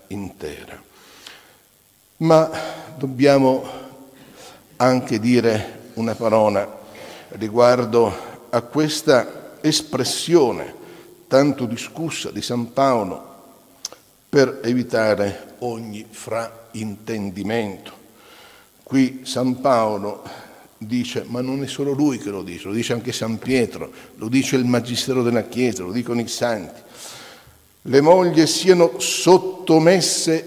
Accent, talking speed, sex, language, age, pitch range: native, 100 wpm, male, Italian, 60-79, 120-150 Hz